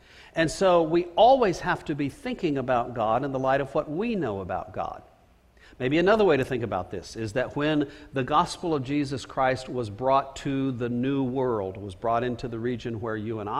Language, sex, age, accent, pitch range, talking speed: English, male, 50-69, American, 115-150 Hz, 210 wpm